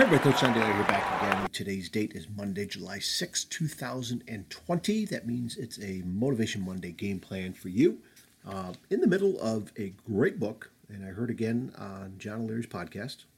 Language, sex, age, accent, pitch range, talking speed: English, male, 40-59, American, 100-130 Hz, 180 wpm